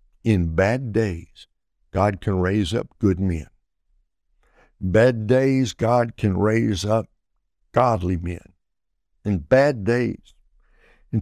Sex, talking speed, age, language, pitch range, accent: male, 120 wpm, 60-79, English, 95-125 Hz, American